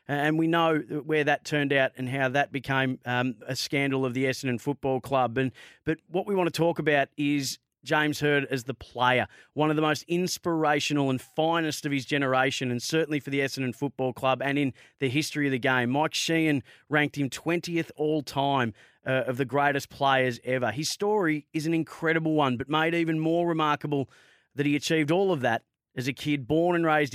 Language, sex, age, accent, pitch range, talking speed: English, male, 30-49, Australian, 130-160 Hz, 205 wpm